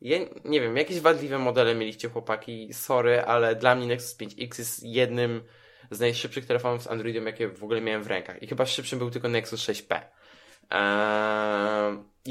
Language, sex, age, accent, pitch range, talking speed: Polish, male, 20-39, native, 110-140 Hz, 175 wpm